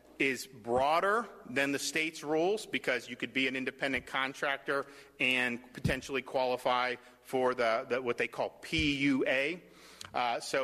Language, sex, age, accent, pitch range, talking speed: English, male, 40-59, American, 125-150 Hz, 140 wpm